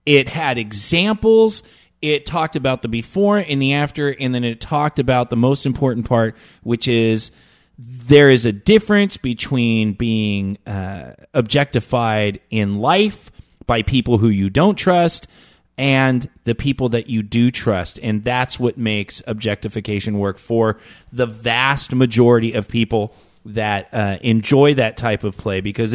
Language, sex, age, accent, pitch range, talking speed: English, male, 30-49, American, 105-130 Hz, 150 wpm